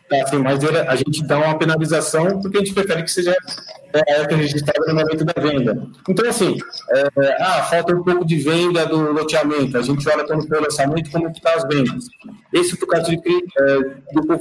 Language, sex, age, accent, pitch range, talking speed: Portuguese, male, 40-59, Brazilian, 140-165 Hz, 220 wpm